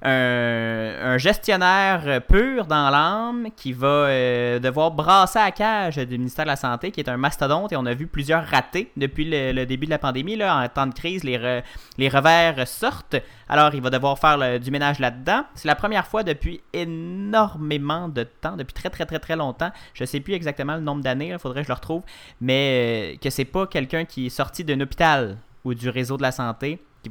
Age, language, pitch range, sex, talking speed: 30-49, French, 125-165 Hz, male, 220 wpm